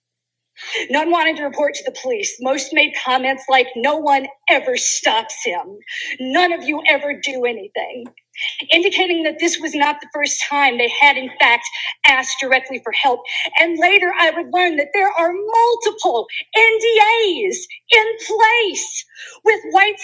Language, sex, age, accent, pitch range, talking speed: English, female, 40-59, American, 290-410 Hz, 155 wpm